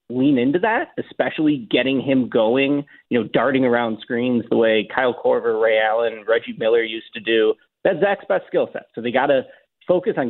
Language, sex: English, male